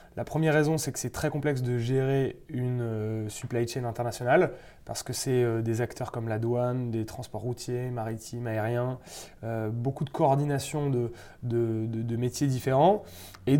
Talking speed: 175 wpm